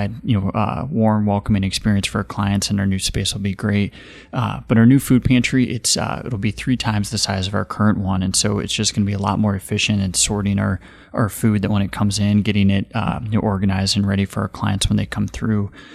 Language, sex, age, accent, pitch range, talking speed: English, male, 30-49, American, 100-110 Hz, 265 wpm